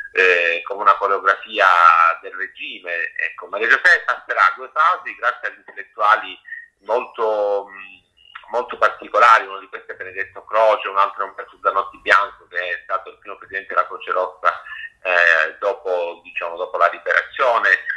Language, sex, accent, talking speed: Italian, male, native, 160 wpm